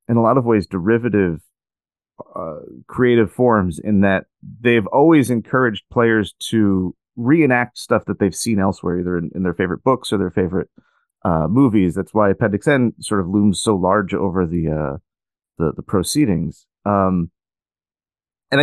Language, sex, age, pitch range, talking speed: English, male, 30-49, 95-125 Hz, 160 wpm